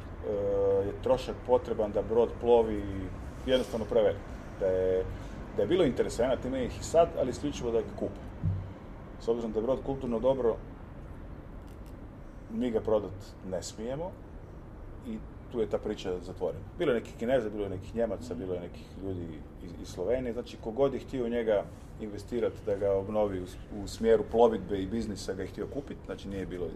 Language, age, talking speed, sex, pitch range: Croatian, 30-49, 175 wpm, male, 90-120 Hz